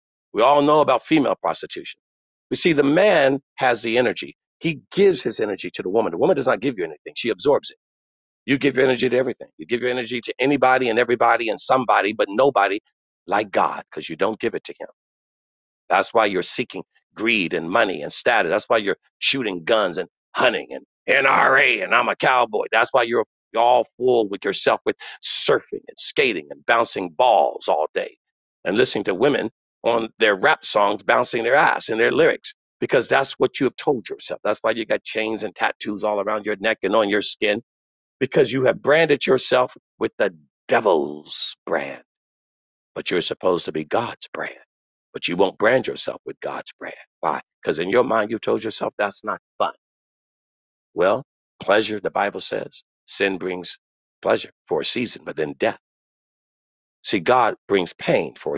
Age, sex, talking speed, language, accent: 50-69, male, 190 wpm, English, American